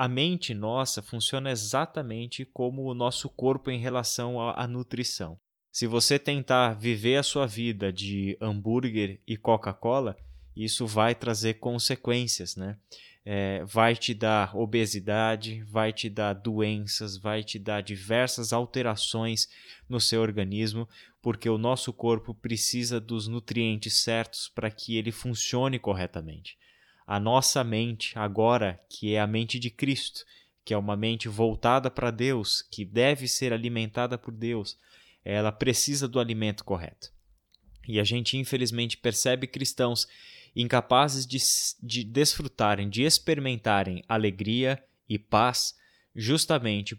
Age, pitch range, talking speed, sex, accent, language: 20-39, 110-125 Hz, 130 wpm, male, Brazilian, Portuguese